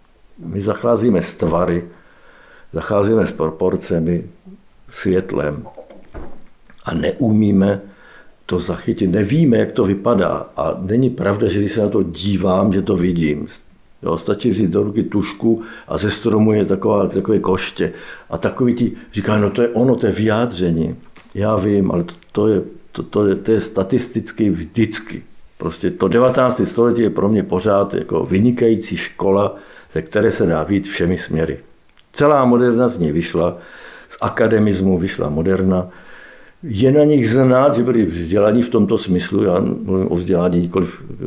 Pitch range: 85-115 Hz